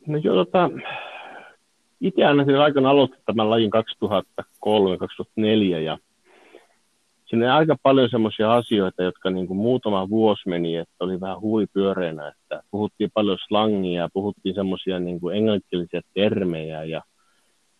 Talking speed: 110 wpm